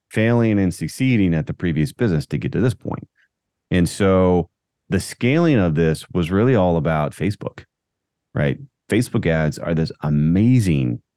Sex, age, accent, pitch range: male, 30-49, American, 85-110 Hz